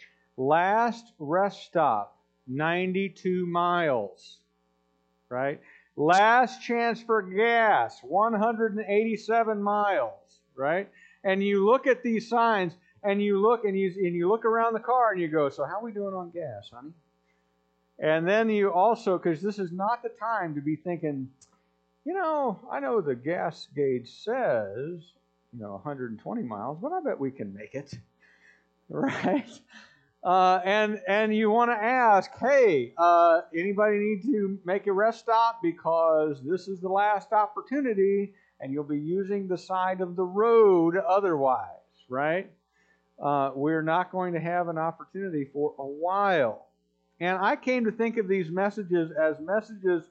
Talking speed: 155 wpm